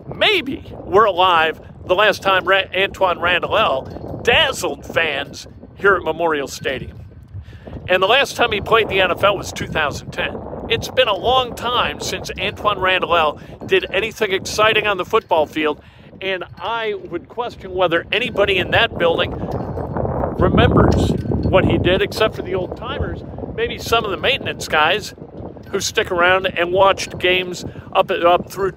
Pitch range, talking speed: 170-220 Hz, 150 wpm